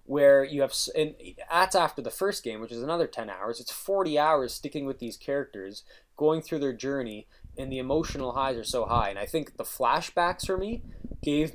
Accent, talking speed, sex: American, 210 wpm, male